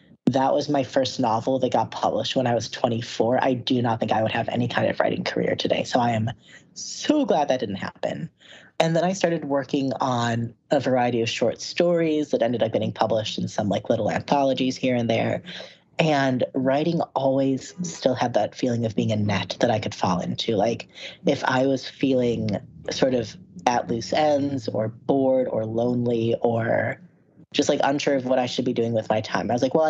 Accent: American